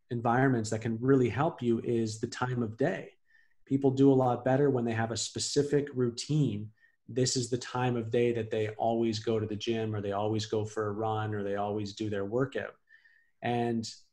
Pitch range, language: 110-135 Hz, English